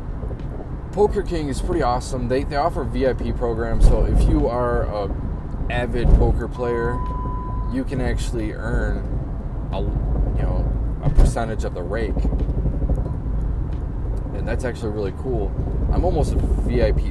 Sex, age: male, 20-39